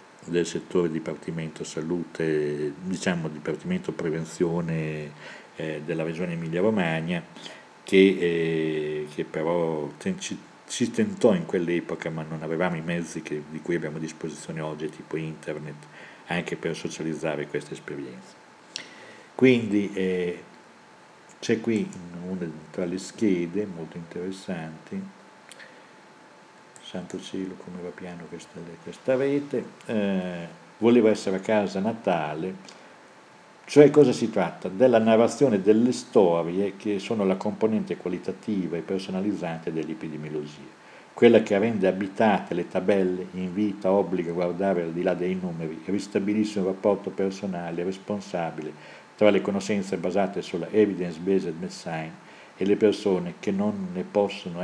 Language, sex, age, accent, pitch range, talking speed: Italian, male, 50-69, native, 80-100 Hz, 130 wpm